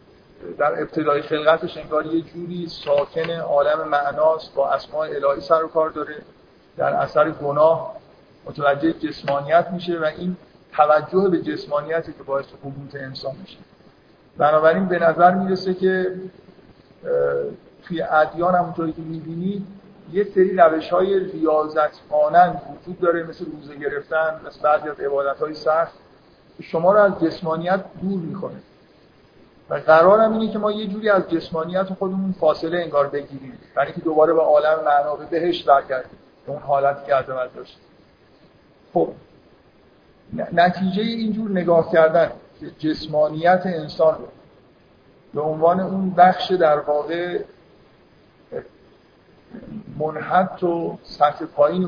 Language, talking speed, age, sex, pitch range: Persian, 120 wpm, 50-69, male, 150-185 Hz